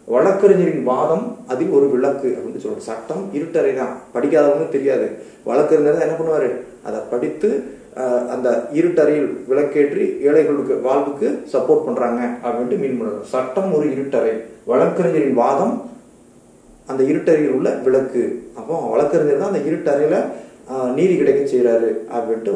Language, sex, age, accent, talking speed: Tamil, male, 30-49, native, 120 wpm